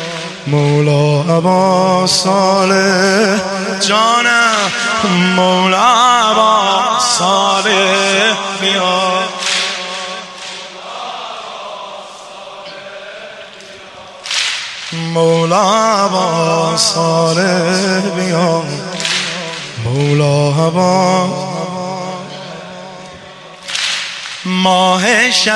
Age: 20-39